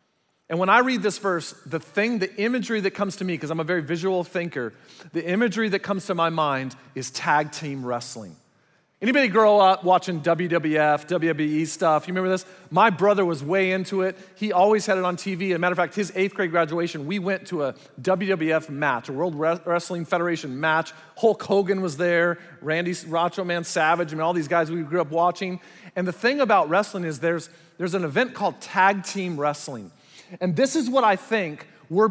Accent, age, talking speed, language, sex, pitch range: American, 40-59, 210 wpm, English, male, 160-200 Hz